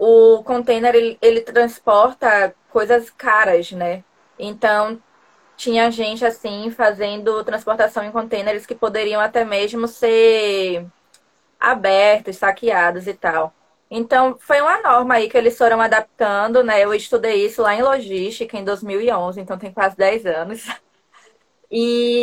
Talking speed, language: 130 wpm, Portuguese